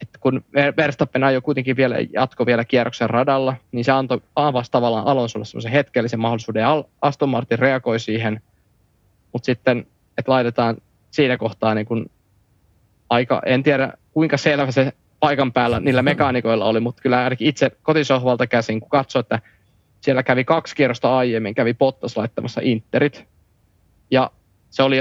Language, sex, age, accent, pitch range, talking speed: Finnish, male, 20-39, native, 115-135 Hz, 150 wpm